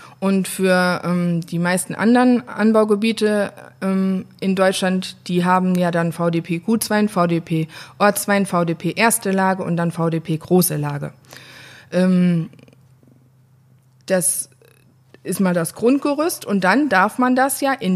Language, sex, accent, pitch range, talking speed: German, female, German, 165-205 Hz, 130 wpm